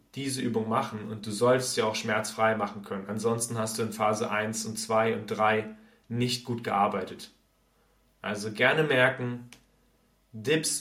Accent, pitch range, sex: German, 110-140 Hz, male